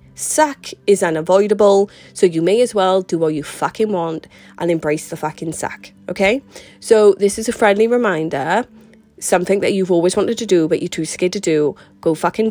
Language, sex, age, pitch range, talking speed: English, female, 20-39, 160-200 Hz, 190 wpm